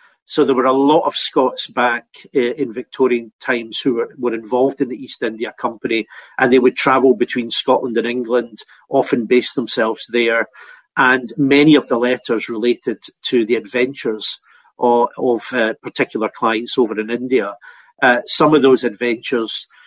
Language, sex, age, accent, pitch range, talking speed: English, male, 40-59, British, 120-135 Hz, 165 wpm